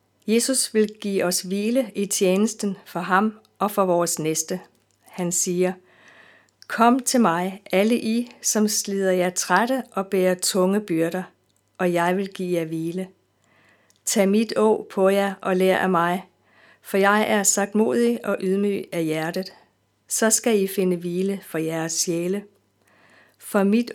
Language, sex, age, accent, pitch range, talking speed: Danish, female, 50-69, native, 180-210 Hz, 155 wpm